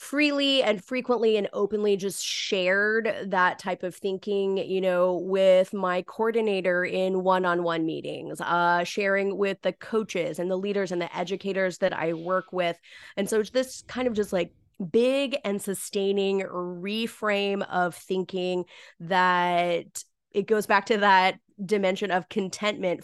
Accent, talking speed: American, 150 wpm